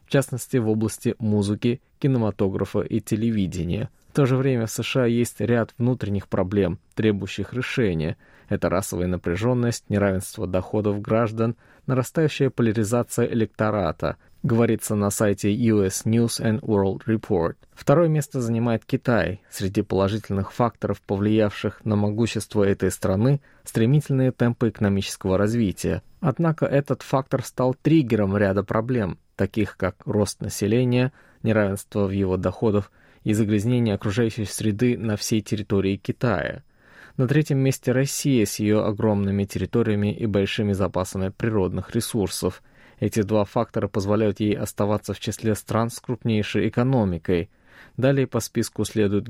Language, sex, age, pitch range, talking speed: Russian, male, 20-39, 100-120 Hz, 130 wpm